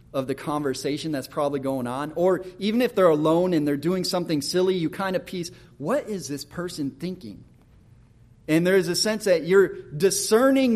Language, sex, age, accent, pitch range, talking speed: English, male, 30-49, American, 140-190 Hz, 190 wpm